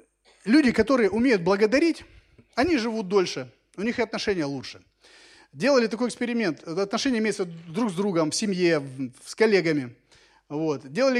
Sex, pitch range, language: male, 150-215 Hz, Russian